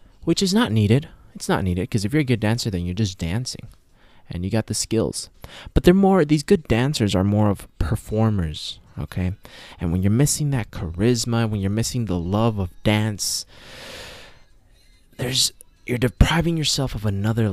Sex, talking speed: male, 180 wpm